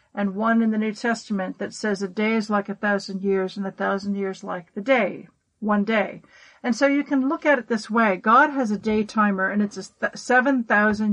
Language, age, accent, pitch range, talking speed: English, 50-69, American, 200-240 Hz, 220 wpm